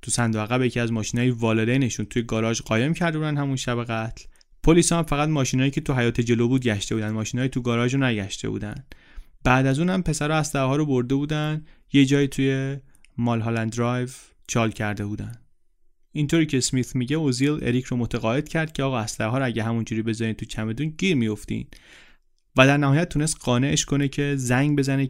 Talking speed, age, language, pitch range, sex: 190 wpm, 30-49, Persian, 120-145 Hz, male